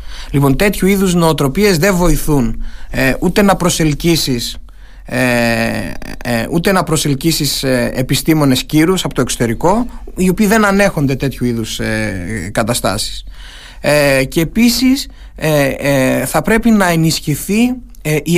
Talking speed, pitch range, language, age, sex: 95 wpm, 135-195 Hz, Greek, 30-49, male